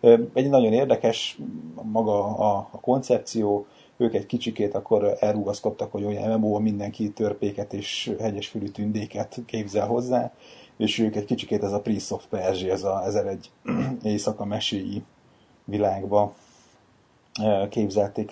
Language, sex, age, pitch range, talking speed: Hungarian, male, 30-49, 100-110 Hz, 120 wpm